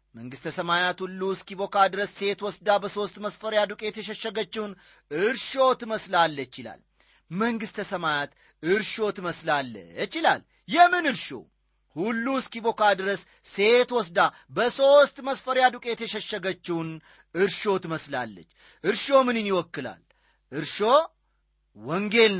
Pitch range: 165-235 Hz